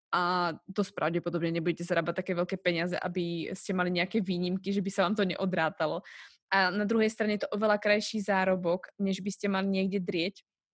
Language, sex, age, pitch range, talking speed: Slovak, female, 20-39, 185-210 Hz, 190 wpm